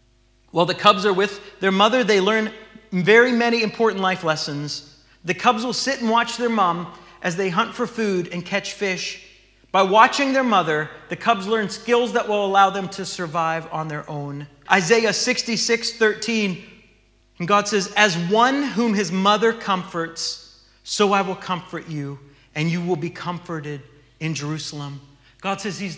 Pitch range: 170-225 Hz